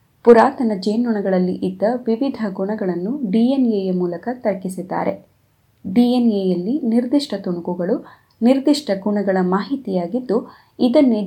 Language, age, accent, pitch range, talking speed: Kannada, 20-39, native, 185-240 Hz, 85 wpm